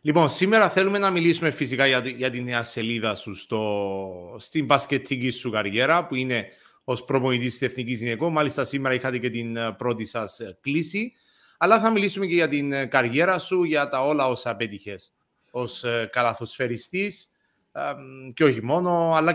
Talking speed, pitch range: 155 wpm, 125-180 Hz